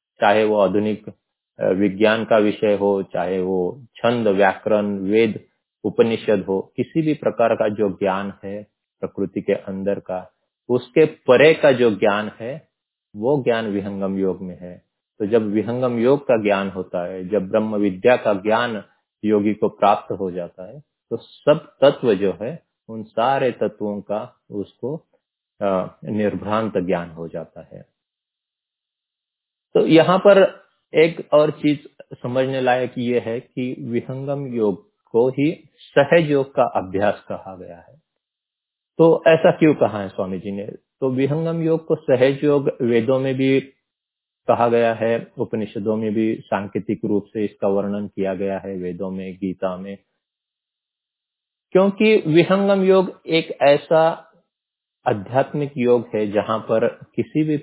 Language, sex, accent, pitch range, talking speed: Hindi, male, native, 100-140 Hz, 145 wpm